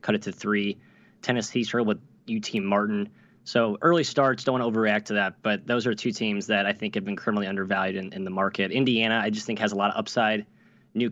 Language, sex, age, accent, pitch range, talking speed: English, male, 20-39, American, 105-120 Hz, 235 wpm